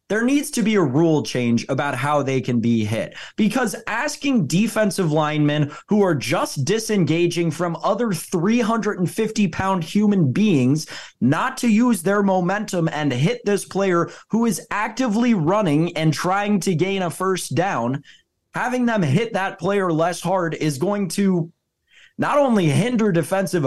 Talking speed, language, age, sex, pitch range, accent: 150 wpm, English, 20-39, male, 150-210 Hz, American